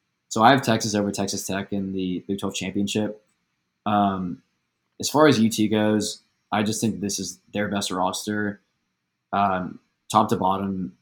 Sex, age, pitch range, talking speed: male, 20-39, 95-105 Hz, 165 wpm